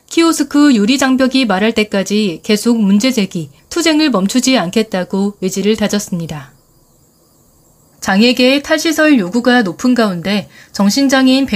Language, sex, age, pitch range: Korean, female, 30-49, 195-265 Hz